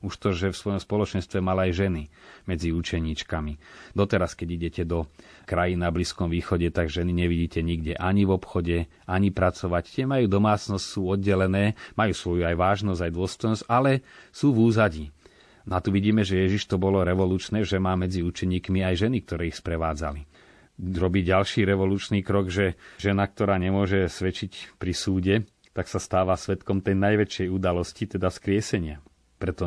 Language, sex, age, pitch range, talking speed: Slovak, male, 30-49, 85-100 Hz, 165 wpm